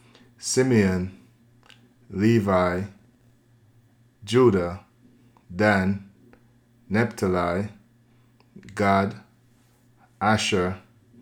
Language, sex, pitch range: English, male, 95-120 Hz